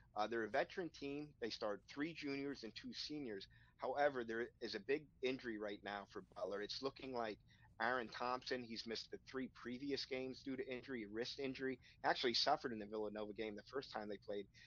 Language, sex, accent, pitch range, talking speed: English, male, American, 110-130 Hz, 200 wpm